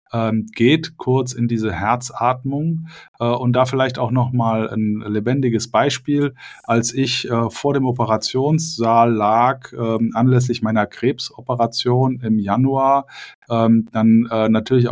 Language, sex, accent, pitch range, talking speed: German, male, German, 110-130 Hz, 130 wpm